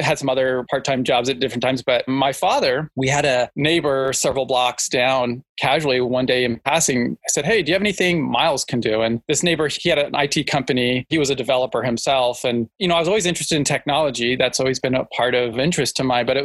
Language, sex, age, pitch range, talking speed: English, male, 20-39, 125-145 Hz, 240 wpm